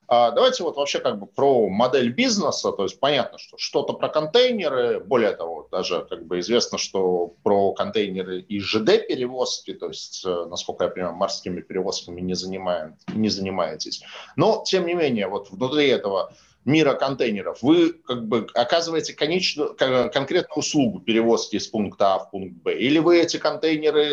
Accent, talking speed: native, 155 wpm